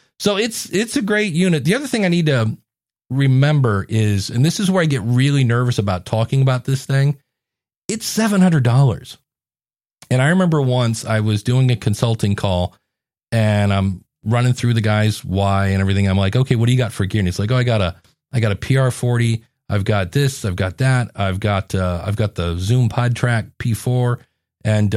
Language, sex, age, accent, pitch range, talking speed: English, male, 40-59, American, 110-150 Hz, 200 wpm